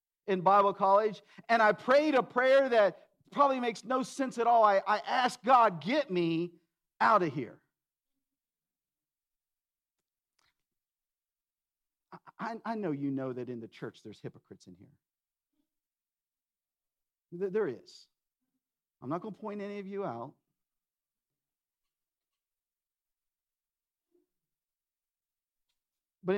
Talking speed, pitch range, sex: 110 wpm, 130-220 Hz, male